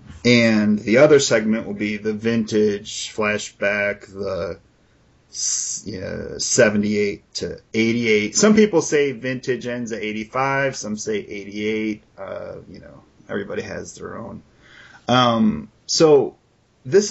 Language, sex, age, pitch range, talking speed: English, male, 30-49, 110-145 Hz, 115 wpm